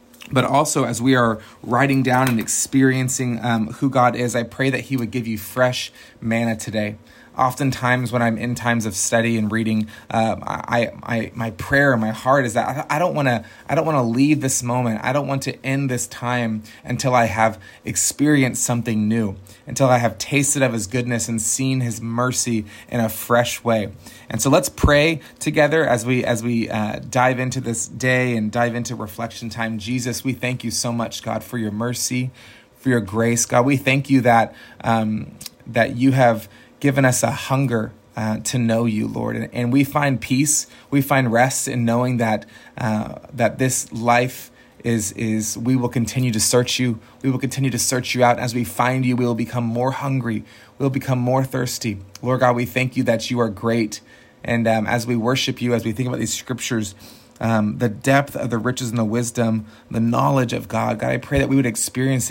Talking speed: 205 wpm